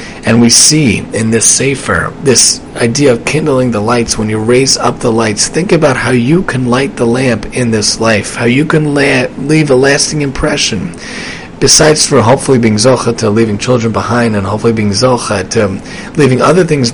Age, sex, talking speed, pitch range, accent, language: 30-49, male, 190 wpm, 115-145 Hz, American, English